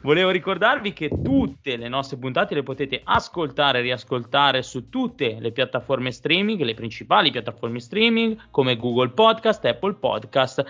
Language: Italian